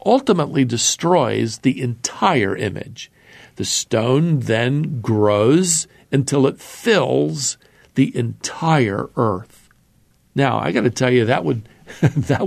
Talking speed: 115 wpm